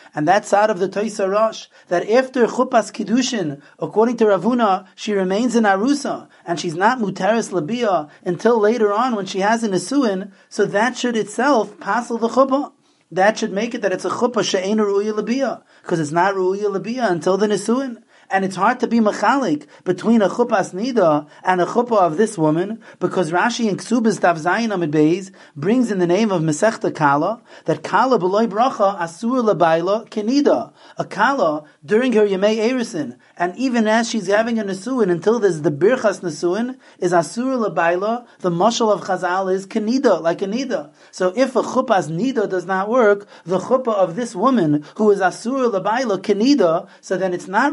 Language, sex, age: English, male, 30-49